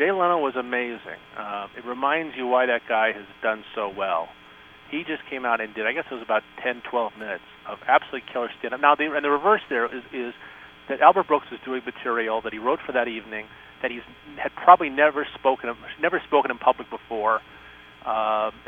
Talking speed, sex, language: 210 wpm, male, English